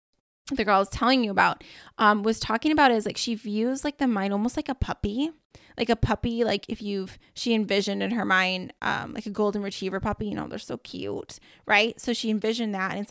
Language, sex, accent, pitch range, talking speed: English, female, American, 205-250 Hz, 235 wpm